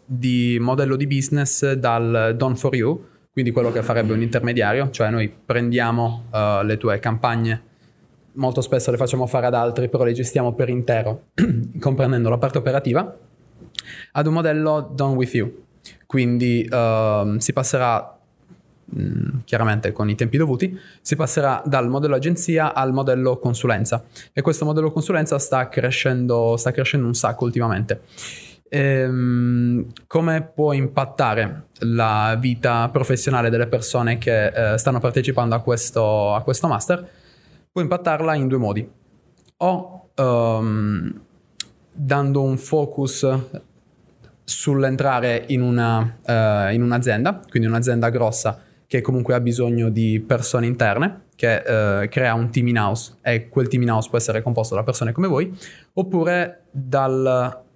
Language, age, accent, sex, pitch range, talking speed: Italian, 20-39, native, male, 115-140 Hz, 135 wpm